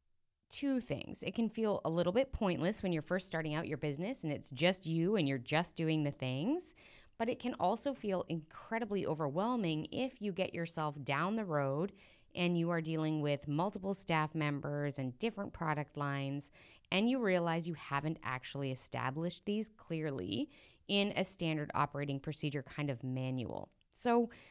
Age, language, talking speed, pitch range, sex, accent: 20-39, English, 170 wpm, 145-195 Hz, female, American